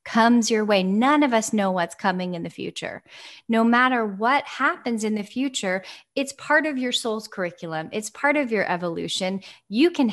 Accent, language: American, English